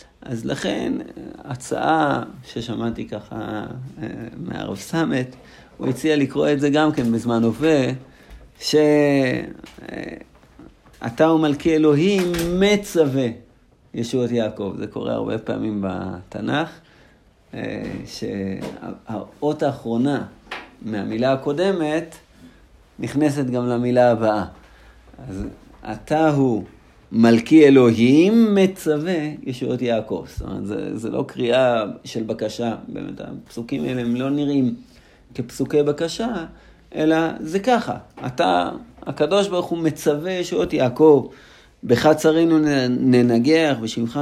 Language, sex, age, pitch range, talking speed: Hebrew, male, 50-69, 115-155 Hz, 100 wpm